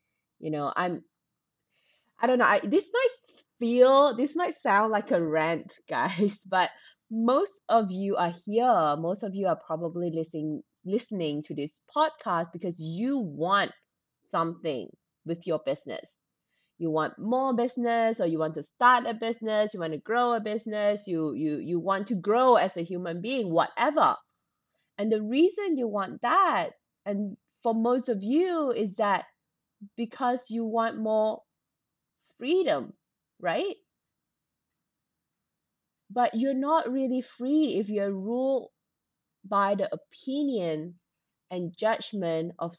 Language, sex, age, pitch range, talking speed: English, female, 20-39, 180-250 Hz, 140 wpm